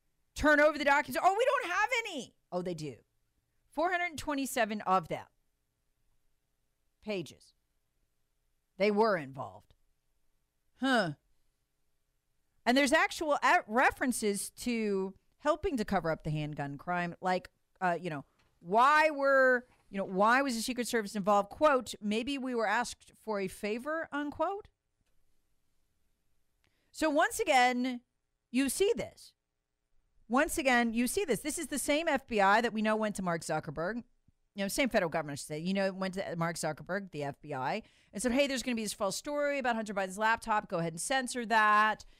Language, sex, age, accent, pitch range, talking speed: English, female, 40-59, American, 185-280 Hz, 155 wpm